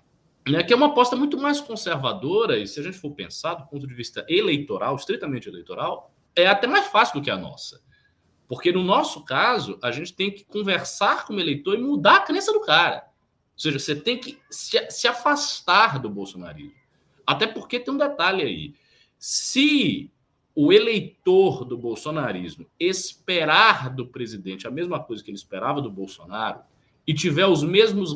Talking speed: 175 wpm